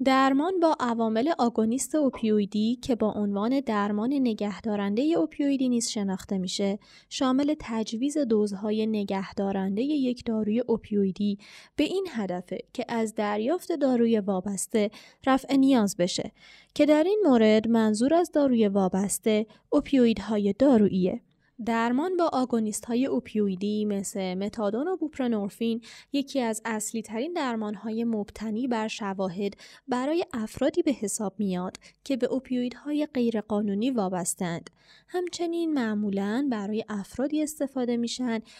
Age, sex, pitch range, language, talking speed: 20-39, female, 210-275 Hz, Persian, 120 wpm